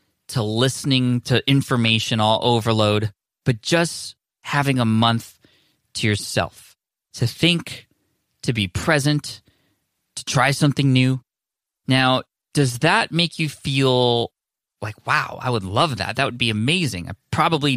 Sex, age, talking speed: male, 20-39, 135 wpm